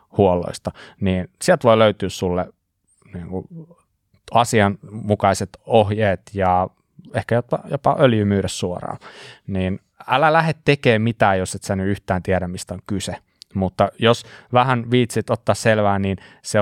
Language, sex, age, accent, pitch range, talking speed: Finnish, male, 20-39, native, 95-105 Hz, 135 wpm